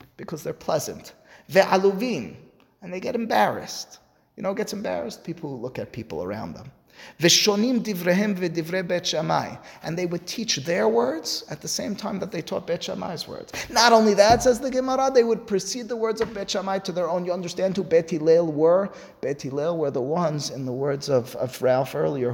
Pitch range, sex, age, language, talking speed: 130-185 Hz, male, 30-49, English, 195 wpm